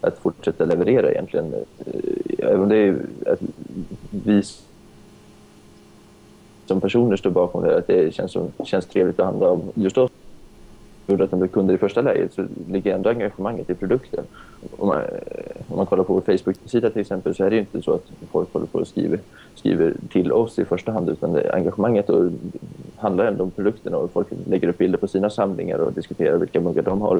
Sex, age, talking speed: male, 20-39, 190 wpm